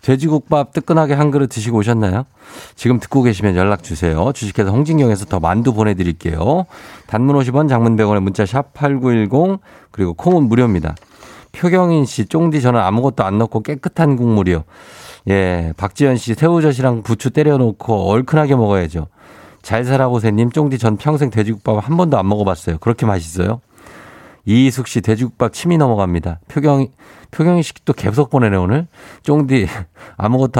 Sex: male